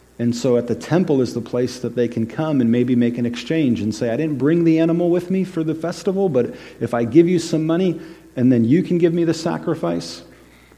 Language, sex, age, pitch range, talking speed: English, male, 40-59, 115-150 Hz, 250 wpm